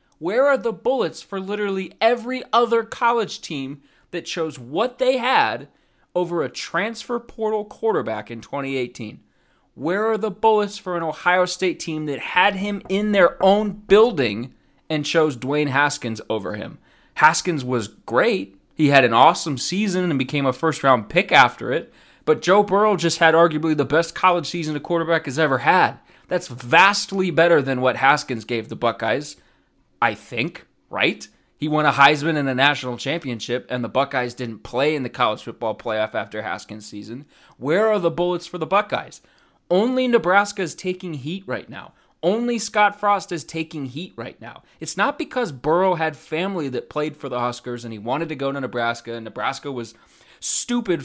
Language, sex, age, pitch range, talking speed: English, male, 30-49, 130-185 Hz, 175 wpm